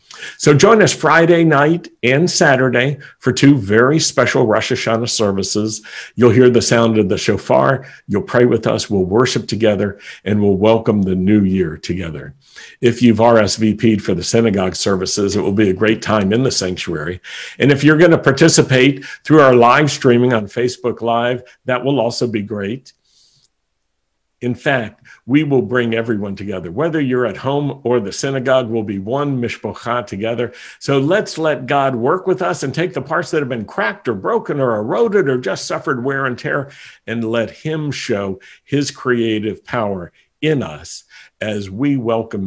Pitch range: 105-135 Hz